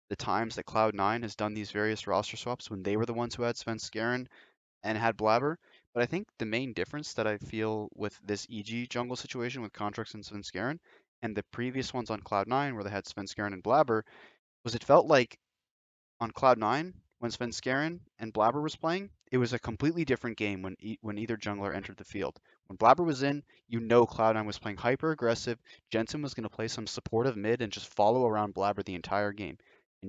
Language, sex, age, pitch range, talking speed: English, male, 20-39, 100-120 Hz, 210 wpm